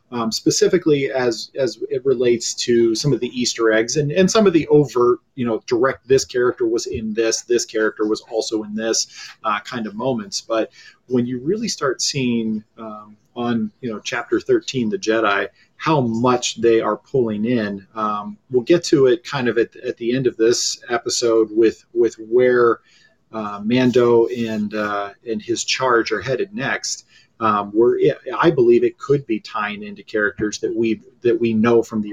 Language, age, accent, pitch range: English, 30-49, American, 110-155 Hz